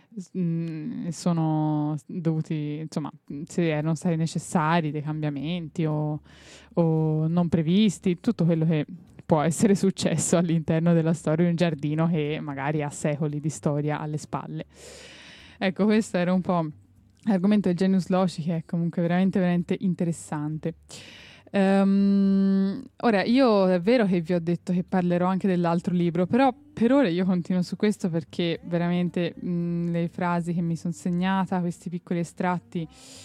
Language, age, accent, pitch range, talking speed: Italian, 20-39, native, 165-195 Hz, 145 wpm